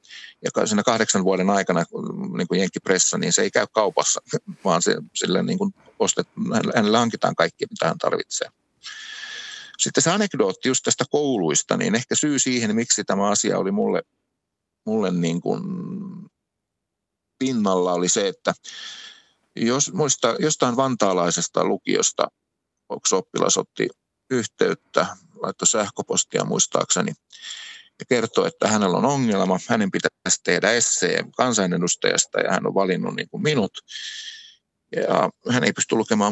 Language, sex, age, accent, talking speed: Finnish, male, 50-69, native, 135 wpm